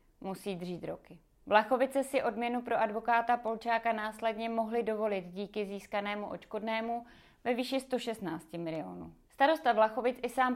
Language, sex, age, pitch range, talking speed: Czech, female, 30-49, 200-235 Hz, 130 wpm